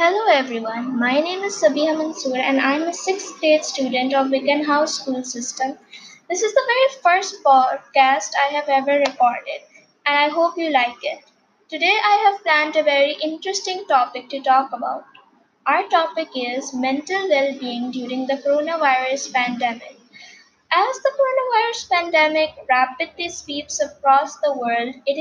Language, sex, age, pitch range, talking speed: English, female, 20-39, 255-315 Hz, 155 wpm